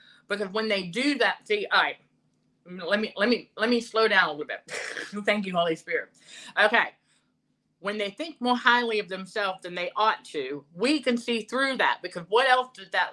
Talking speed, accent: 205 wpm, American